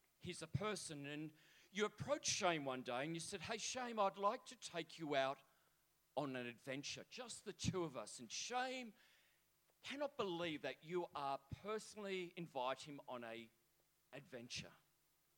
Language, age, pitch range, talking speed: English, 40-59, 125-180 Hz, 160 wpm